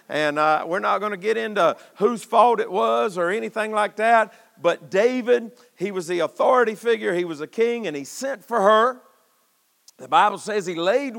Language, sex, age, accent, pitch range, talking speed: English, male, 50-69, American, 185-225 Hz, 200 wpm